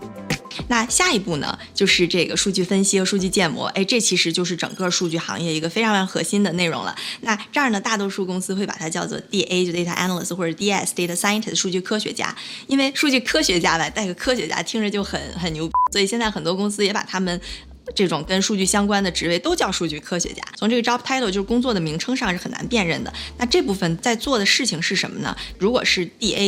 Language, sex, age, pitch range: Chinese, female, 20-39, 170-205 Hz